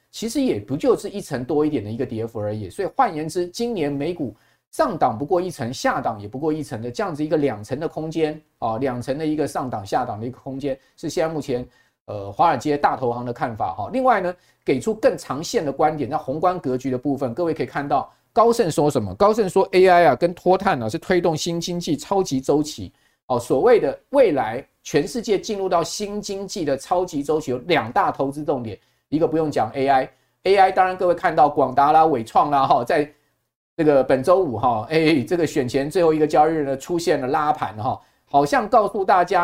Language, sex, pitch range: Chinese, male, 135-190 Hz